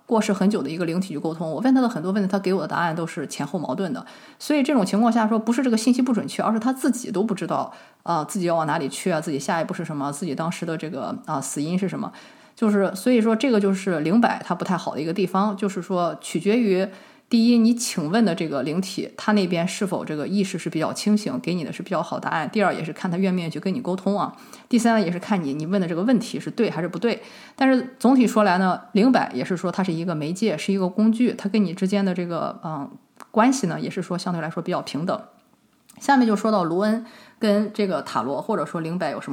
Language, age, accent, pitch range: Chinese, 20-39, native, 180-235 Hz